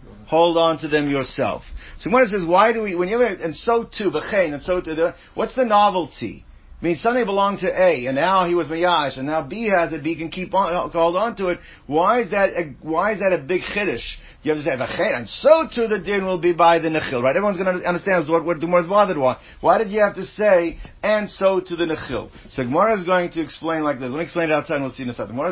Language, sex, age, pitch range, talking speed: English, male, 50-69, 145-195 Hz, 265 wpm